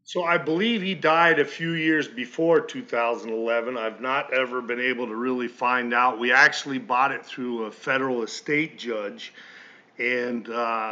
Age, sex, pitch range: 40-59, male, 125-155 Hz